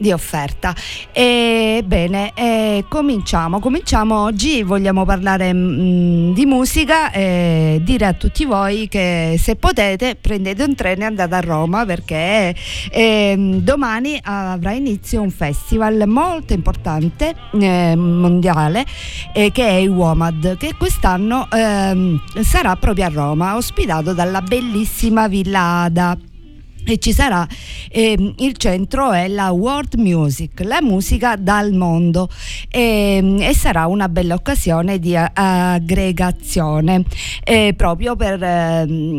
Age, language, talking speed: 50-69, Italian, 125 wpm